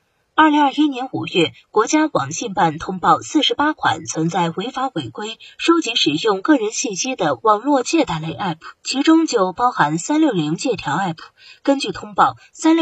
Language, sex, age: Chinese, female, 20-39